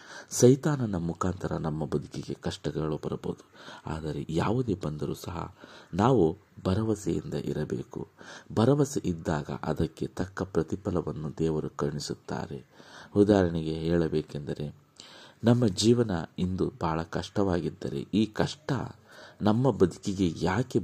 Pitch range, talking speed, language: 80-105 Hz, 90 wpm, Kannada